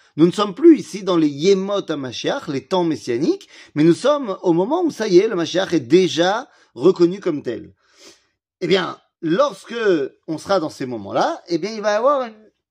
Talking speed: 205 wpm